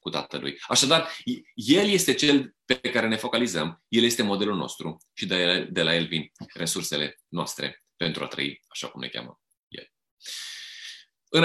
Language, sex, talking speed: Romanian, male, 155 wpm